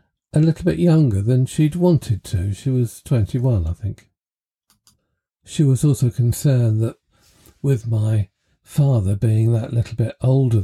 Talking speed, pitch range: 145 wpm, 105-135 Hz